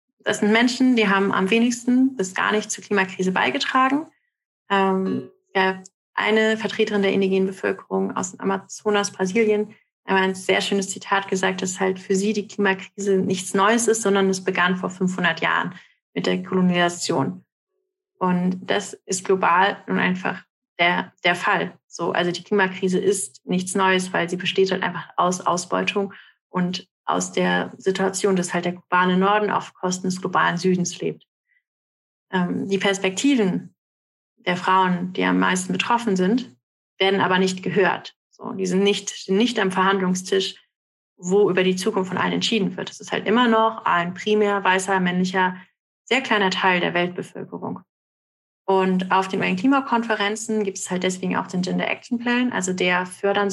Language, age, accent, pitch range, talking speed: German, 30-49, German, 185-205 Hz, 165 wpm